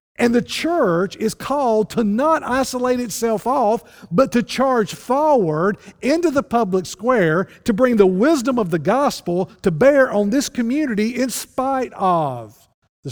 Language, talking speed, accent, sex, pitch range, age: English, 155 wpm, American, male, 130-200 Hz, 50-69